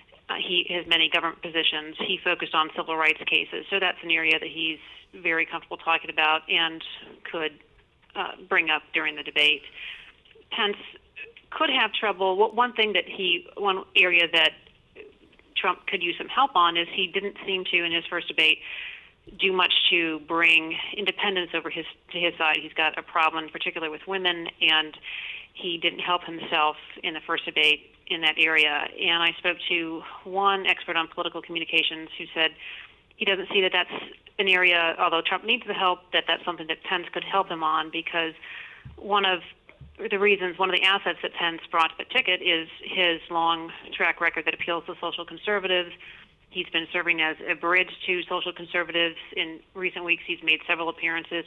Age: 40-59